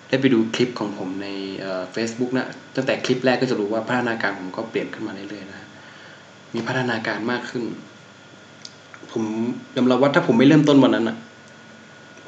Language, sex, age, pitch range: Thai, male, 20-39, 105-120 Hz